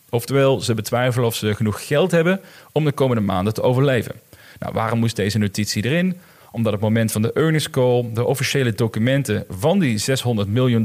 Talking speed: 195 wpm